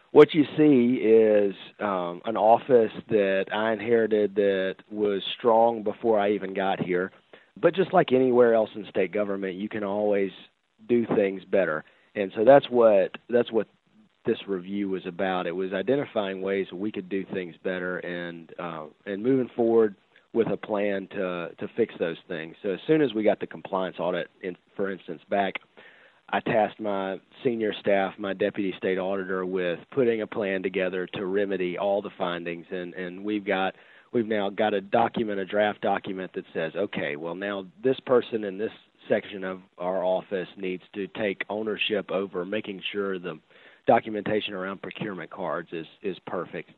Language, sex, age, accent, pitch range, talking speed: English, male, 40-59, American, 95-110 Hz, 175 wpm